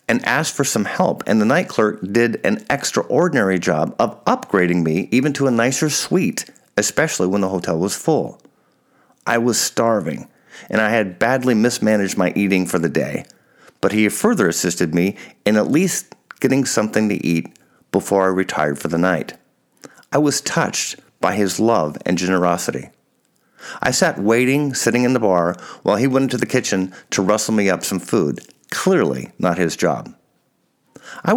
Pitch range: 95-135 Hz